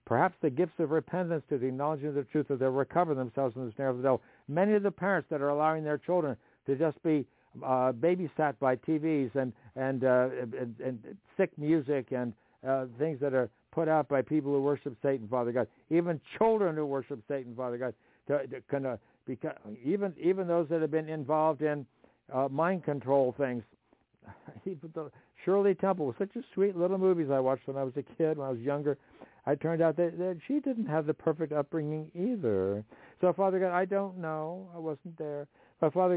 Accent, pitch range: American, 130-165 Hz